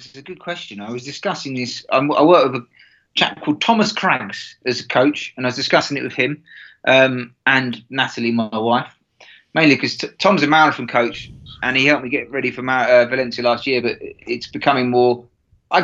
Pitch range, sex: 125-155 Hz, male